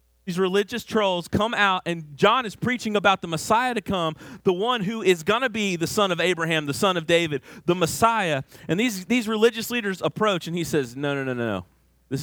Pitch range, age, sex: 115-170 Hz, 30-49, male